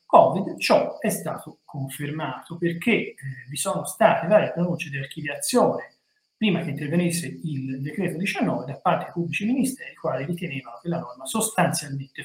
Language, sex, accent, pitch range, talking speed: Italian, male, native, 150-215 Hz, 155 wpm